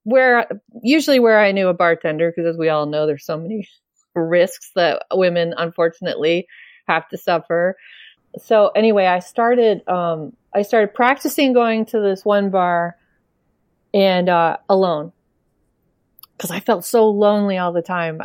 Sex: female